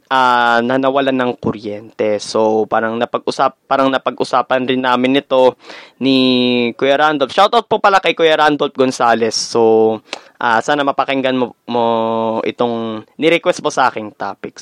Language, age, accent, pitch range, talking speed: Filipino, 20-39, native, 130-210 Hz, 145 wpm